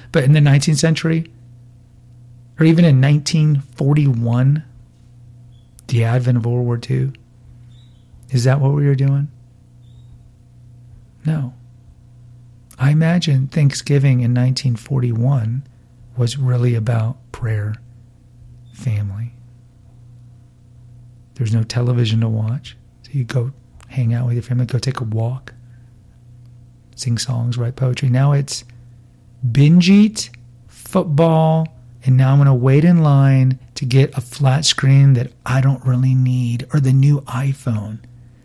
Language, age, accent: English, 40-59, American